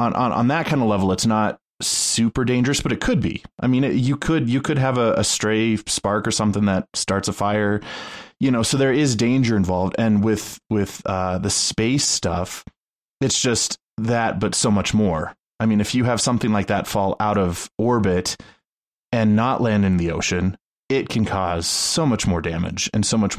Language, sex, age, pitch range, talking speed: English, male, 20-39, 95-115 Hz, 210 wpm